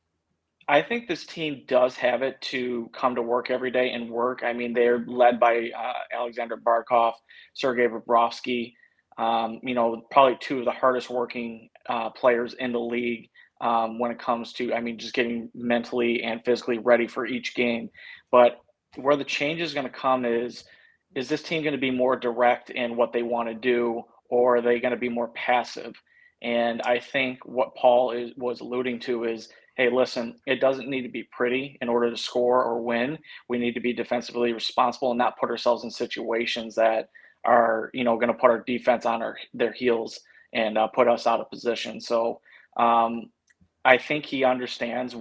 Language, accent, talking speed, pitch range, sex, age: English, American, 195 wpm, 115-125 Hz, male, 30-49